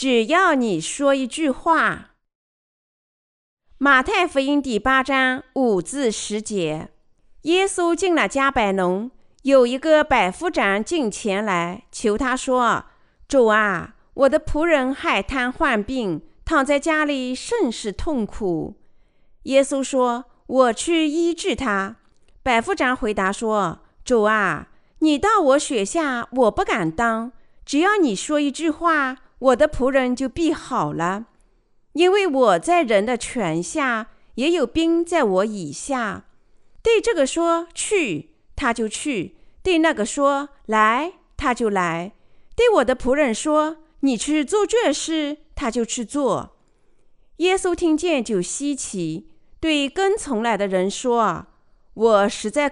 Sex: female